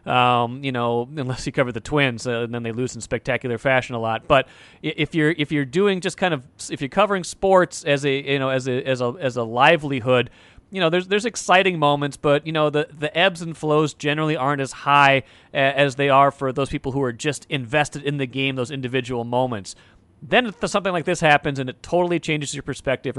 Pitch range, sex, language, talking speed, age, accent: 130-150 Hz, male, English, 230 wpm, 30-49, American